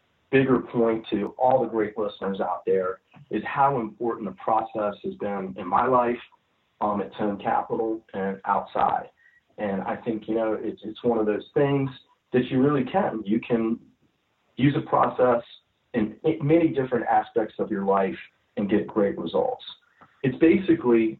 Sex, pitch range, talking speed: male, 105-130 Hz, 165 wpm